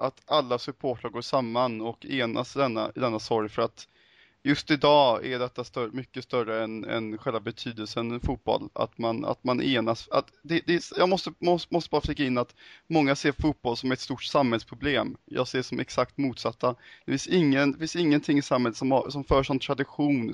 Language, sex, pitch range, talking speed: Swedish, male, 115-140 Hz, 205 wpm